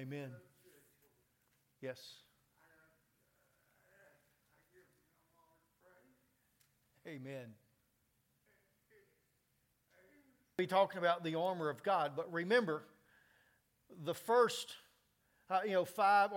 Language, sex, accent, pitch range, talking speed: English, male, American, 170-225 Hz, 65 wpm